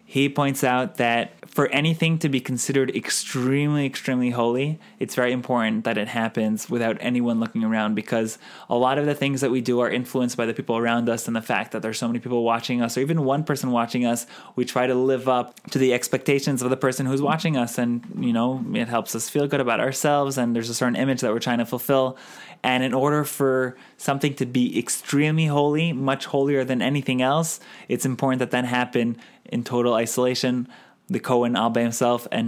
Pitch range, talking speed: 115-135 Hz, 215 wpm